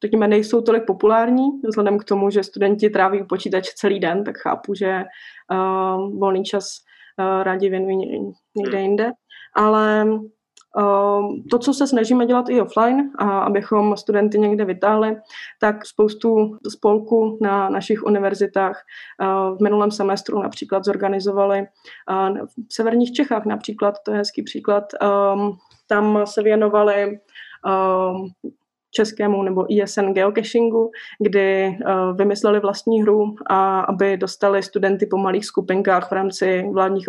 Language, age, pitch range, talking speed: Czech, 20-39, 190-210 Hz, 135 wpm